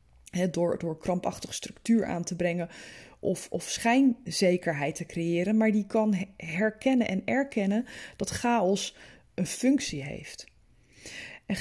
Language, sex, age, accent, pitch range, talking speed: Dutch, female, 20-39, Dutch, 180-235 Hz, 125 wpm